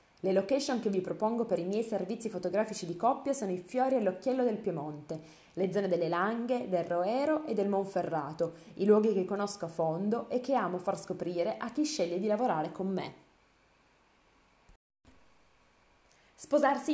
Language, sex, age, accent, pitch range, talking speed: Italian, female, 20-39, native, 175-245 Hz, 165 wpm